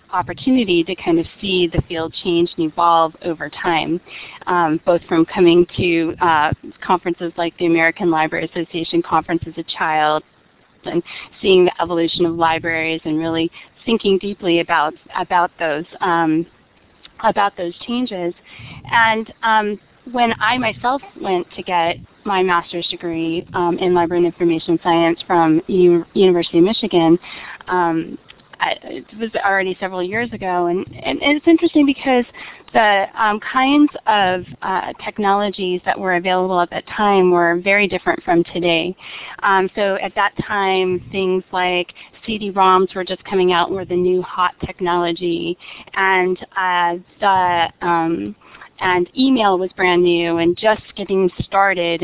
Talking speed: 140 wpm